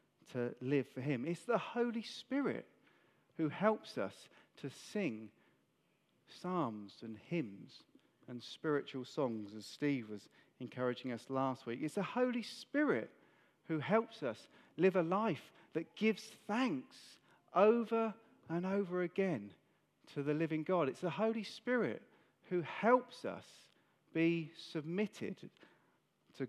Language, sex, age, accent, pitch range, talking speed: English, male, 40-59, British, 135-195 Hz, 130 wpm